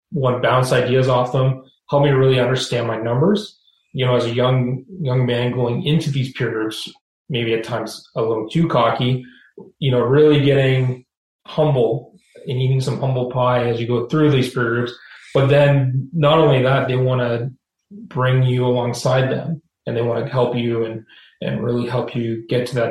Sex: male